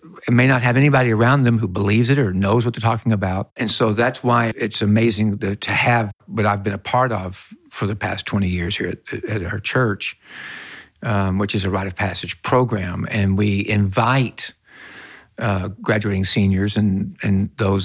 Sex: male